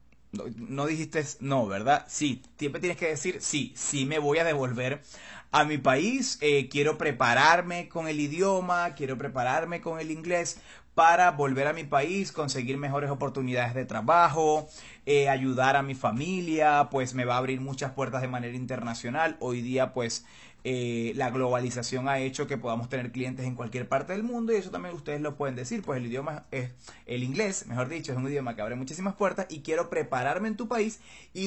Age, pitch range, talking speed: 30-49, 130-170 Hz, 195 wpm